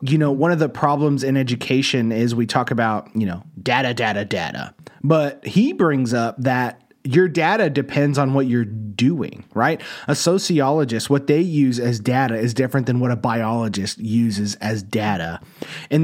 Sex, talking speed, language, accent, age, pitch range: male, 175 wpm, English, American, 30-49, 120-150 Hz